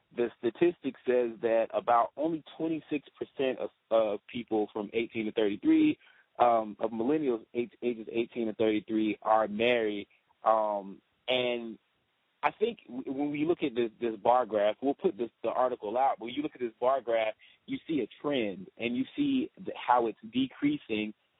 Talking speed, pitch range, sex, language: 160 wpm, 110-150 Hz, male, English